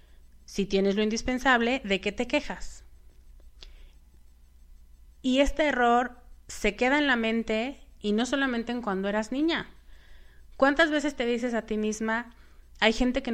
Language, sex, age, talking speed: Spanish, female, 30-49, 150 wpm